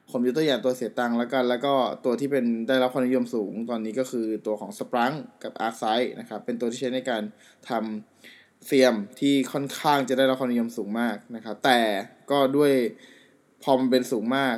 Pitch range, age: 115-135 Hz, 20-39